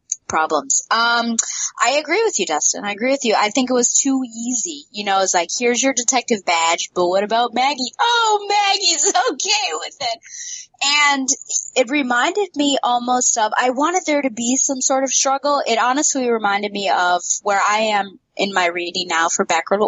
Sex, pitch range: female, 175-255 Hz